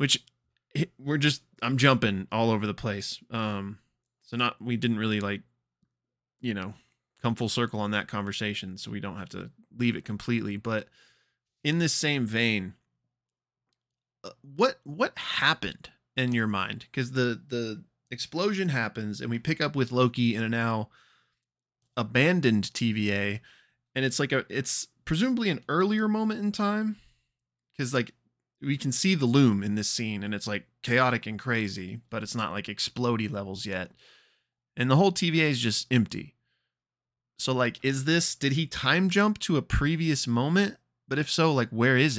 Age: 20-39